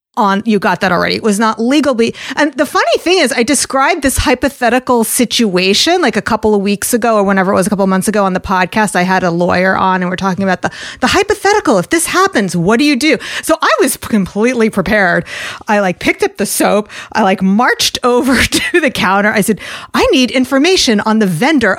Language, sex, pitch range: English, female, 185-240 Hz